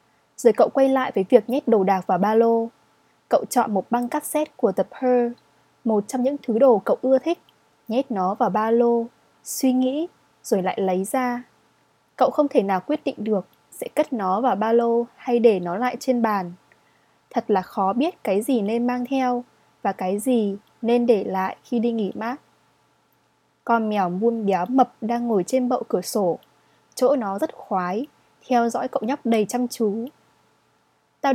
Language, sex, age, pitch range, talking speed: Vietnamese, female, 20-39, 215-265 Hz, 190 wpm